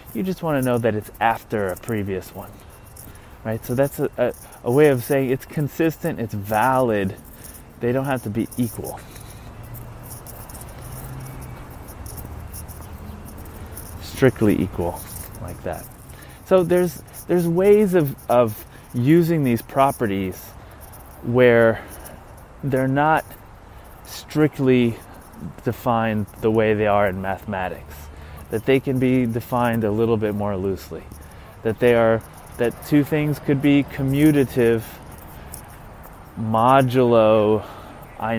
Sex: male